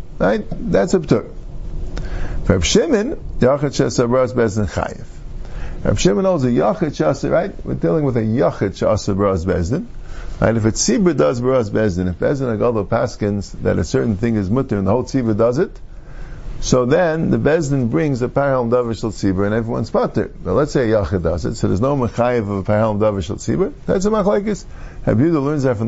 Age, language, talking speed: 50-69, English, 180 wpm